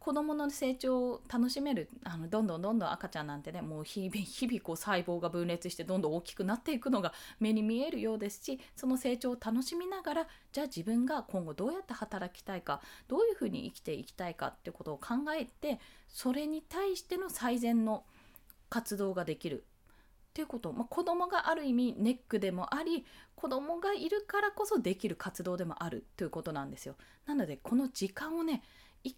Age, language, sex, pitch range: 20-39, Japanese, female, 190-285 Hz